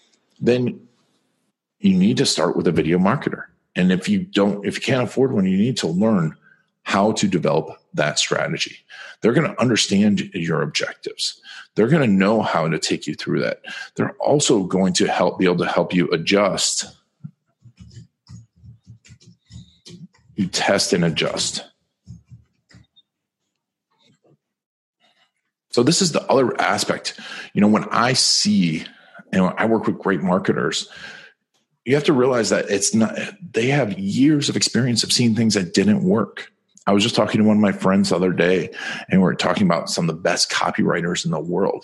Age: 40-59